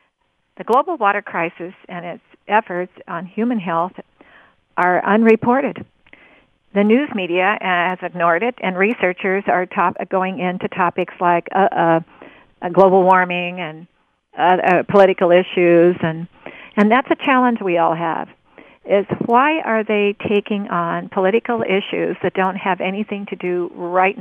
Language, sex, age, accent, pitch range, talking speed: English, female, 50-69, American, 175-210 Hz, 140 wpm